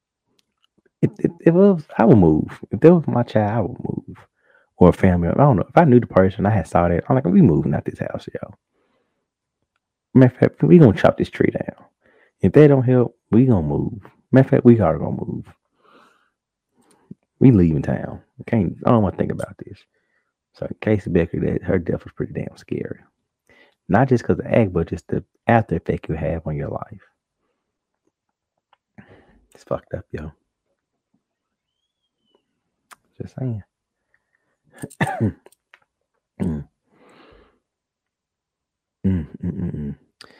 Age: 30-49